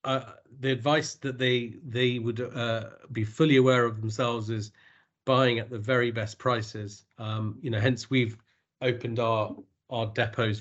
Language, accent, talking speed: English, British, 165 wpm